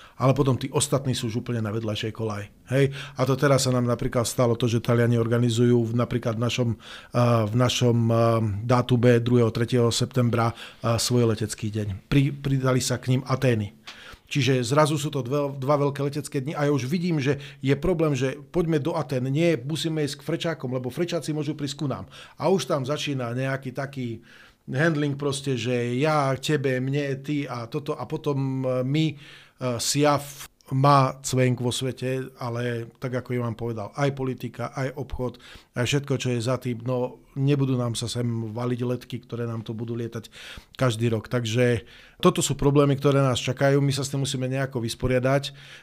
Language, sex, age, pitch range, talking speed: Slovak, male, 40-59, 120-140 Hz, 180 wpm